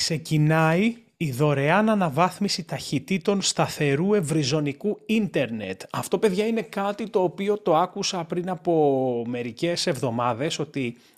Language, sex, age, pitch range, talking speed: Greek, male, 30-49, 145-210 Hz, 115 wpm